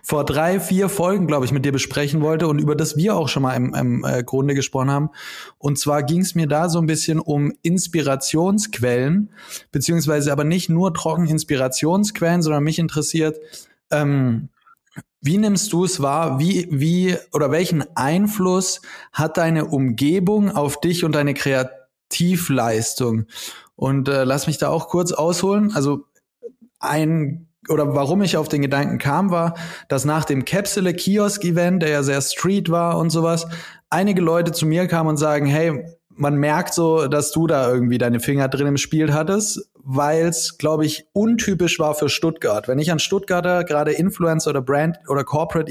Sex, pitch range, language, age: male, 140-170 Hz, German, 20-39